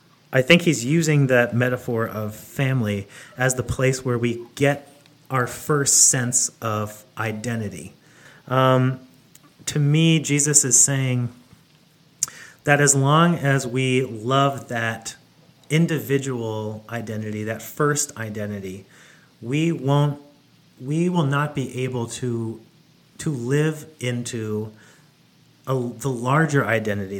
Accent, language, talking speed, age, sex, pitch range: American, English, 115 wpm, 30-49, male, 110-140 Hz